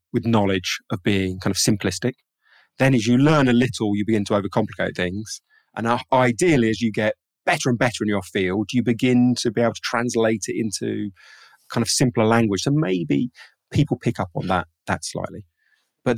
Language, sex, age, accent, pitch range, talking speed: English, male, 30-49, British, 95-125 Hz, 195 wpm